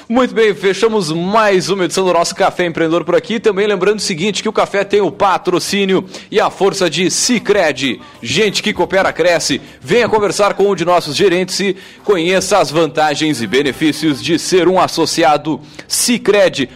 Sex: male